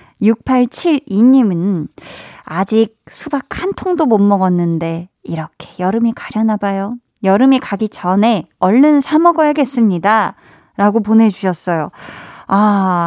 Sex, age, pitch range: female, 20-39, 185-255 Hz